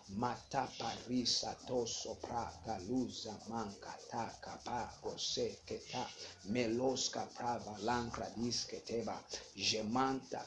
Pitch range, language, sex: 120-130 Hz, English, male